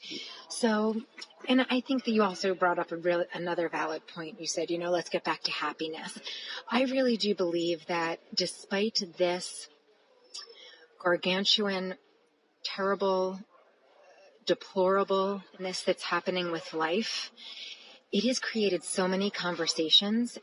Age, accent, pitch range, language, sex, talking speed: 30-49, American, 175-225 Hz, English, female, 125 wpm